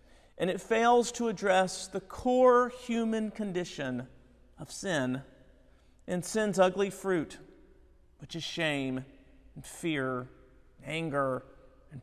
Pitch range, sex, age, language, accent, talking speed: 135-205 Hz, male, 40-59, English, American, 115 wpm